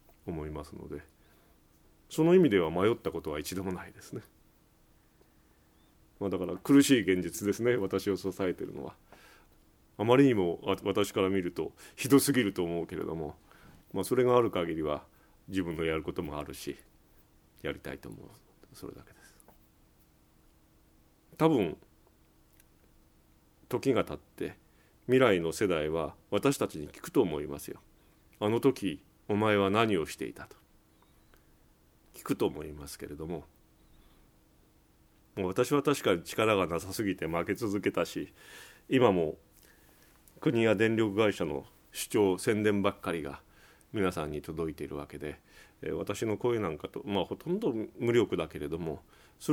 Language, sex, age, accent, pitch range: Japanese, male, 40-59, native, 80-110 Hz